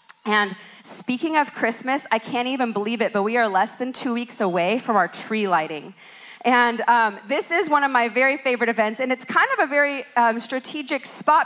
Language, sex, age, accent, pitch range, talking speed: English, female, 40-59, American, 215-265 Hz, 210 wpm